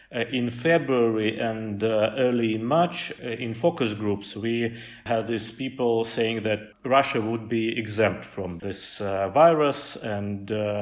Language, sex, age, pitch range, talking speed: English, male, 30-49, 110-130 Hz, 150 wpm